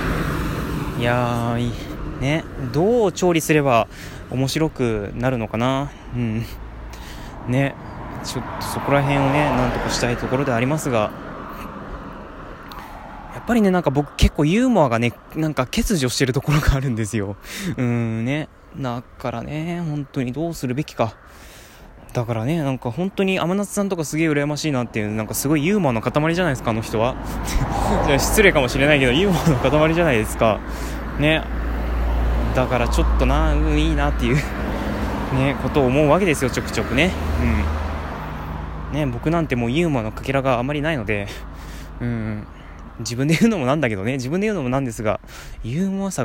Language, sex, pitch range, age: Japanese, male, 105-150 Hz, 20-39